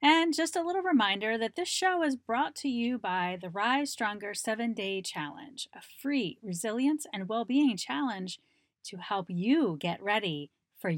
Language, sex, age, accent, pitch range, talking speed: English, female, 30-49, American, 180-265 Hz, 165 wpm